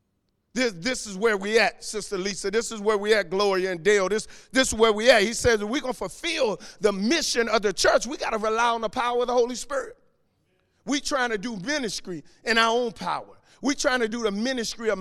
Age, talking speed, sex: 50-69, 245 wpm, male